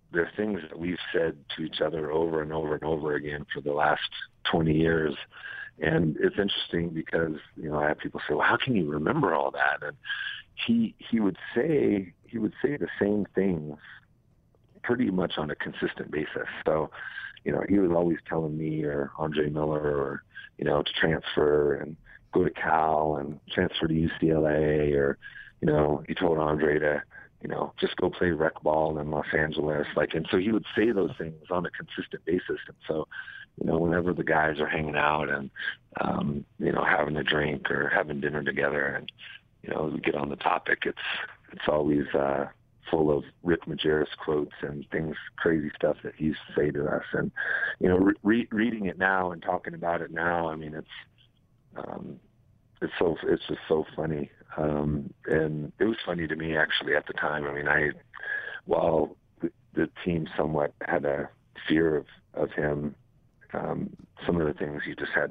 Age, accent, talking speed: 50-69, American, 195 wpm